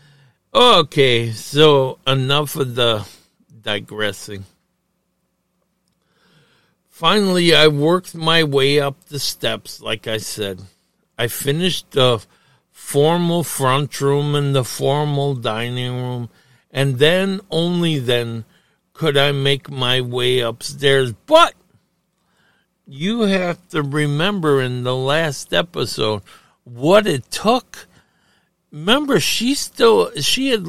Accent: American